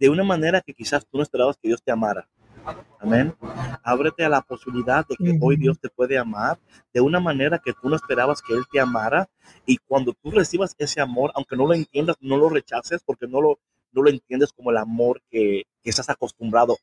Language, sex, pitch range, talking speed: Spanish, male, 125-155 Hz, 215 wpm